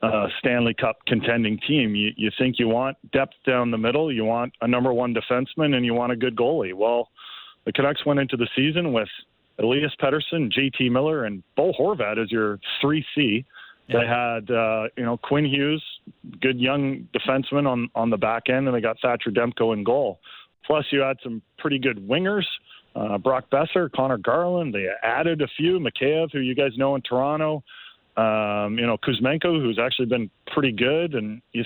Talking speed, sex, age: 190 wpm, male, 40-59